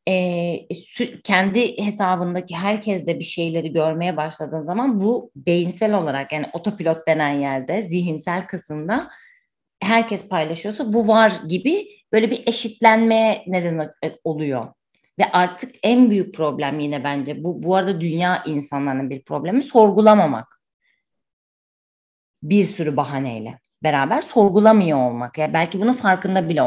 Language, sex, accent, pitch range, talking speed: Turkish, female, native, 150-205 Hz, 125 wpm